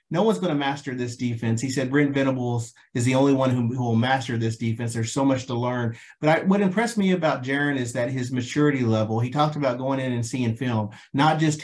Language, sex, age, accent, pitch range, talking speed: English, male, 40-59, American, 125-150 Hz, 240 wpm